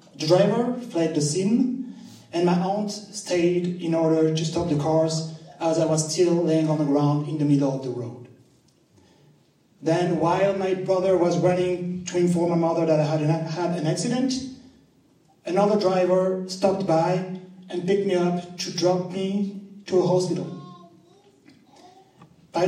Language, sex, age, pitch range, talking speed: English, male, 30-49, 160-190 Hz, 160 wpm